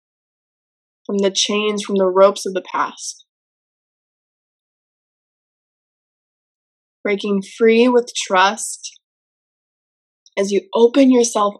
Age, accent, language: 20-39, American, English